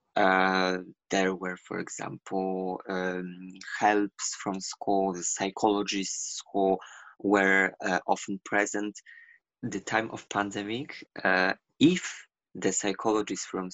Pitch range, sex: 95-110 Hz, male